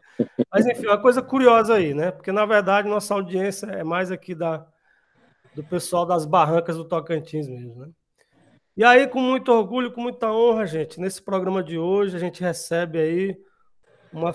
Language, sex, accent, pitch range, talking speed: Portuguese, male, Brazilian, 170-210 Hz, 175 wpm